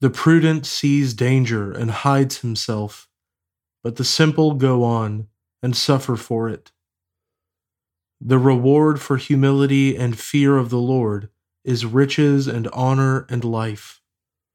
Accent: American